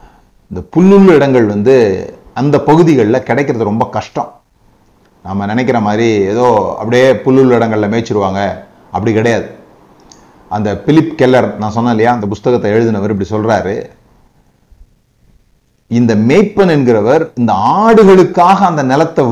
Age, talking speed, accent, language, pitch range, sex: 30-49, 110 wpm, native, Tamil, 120-185 Hz, male